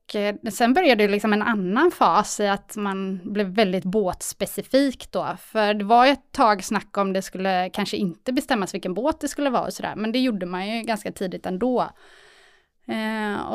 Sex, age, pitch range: female, 20-39, 200-250 Hz